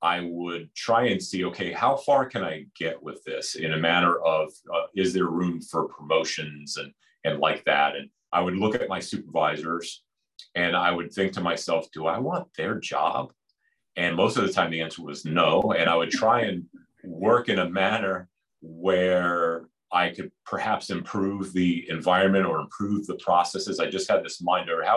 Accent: American